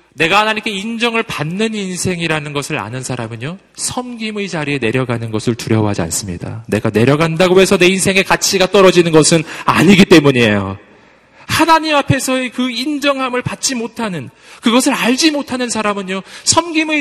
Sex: male